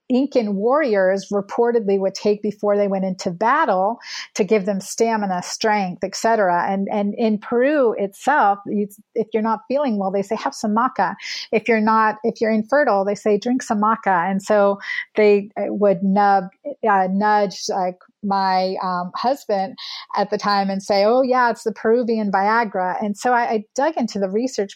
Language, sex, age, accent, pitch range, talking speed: English, female, 40-59, American, 195-225 Hz, 180 wpm